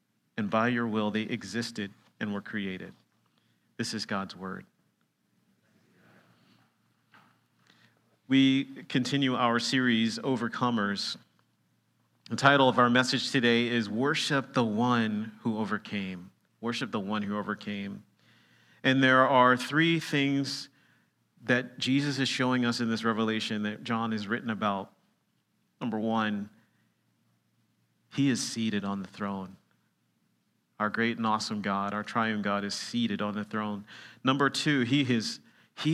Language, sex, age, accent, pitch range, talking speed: English, male, 40-59, American, 105-125 Hz, 130 wpm